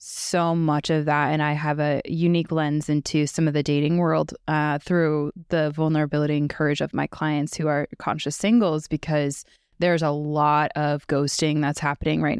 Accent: American